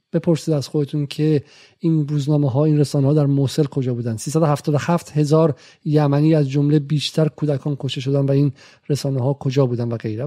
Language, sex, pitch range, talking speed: Persian, male, 140-170 Hz, 195 wpm